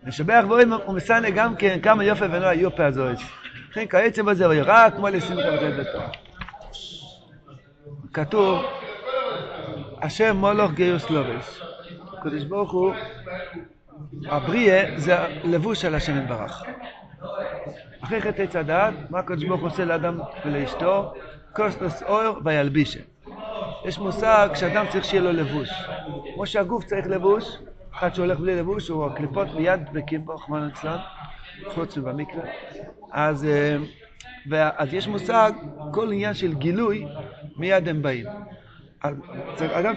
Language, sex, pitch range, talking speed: Hebrew, male, 150-200 Hz, 120 wpm